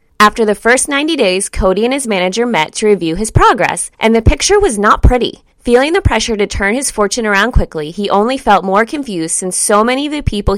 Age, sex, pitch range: 20-39, female, 180-245 Hz